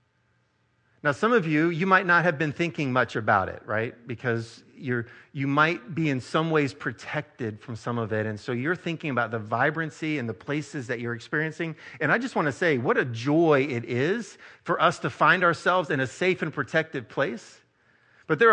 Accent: American